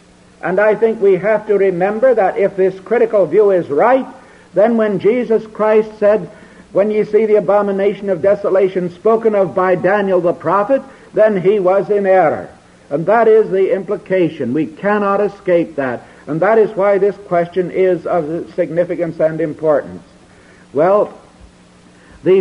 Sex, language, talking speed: male, English, 160 wpm